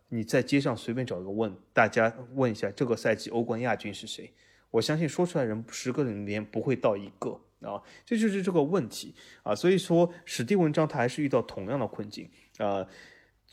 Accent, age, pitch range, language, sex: native, 20-39, 110-165 Hz, Chinese, male